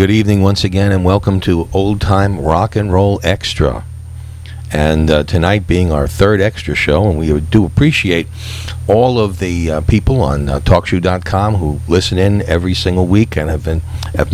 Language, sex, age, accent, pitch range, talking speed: English, male, 50-69, American, 85-110 Hz, 175 wpm